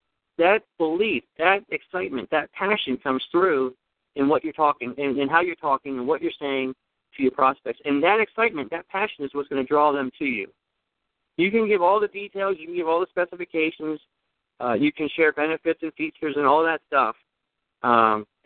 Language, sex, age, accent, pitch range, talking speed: English, male, 50-69, American, 150-180 Hz, 200 wpm